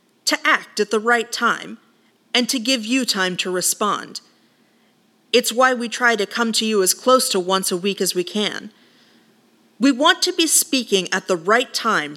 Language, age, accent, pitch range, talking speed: English, 40-59, American, 190-255 Hz, 190 wpm